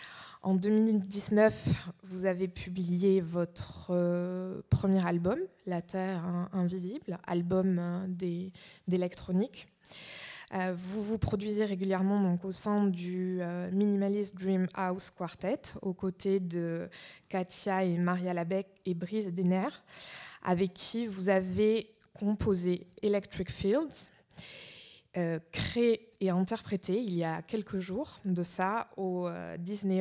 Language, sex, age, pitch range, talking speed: French, female, 20-39, 175-195 Hz, 115 wpm